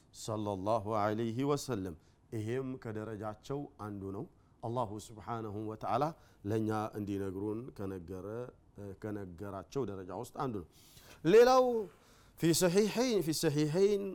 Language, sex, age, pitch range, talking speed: Amharic, male, 50-69, 110-175 Hz, 95 wpm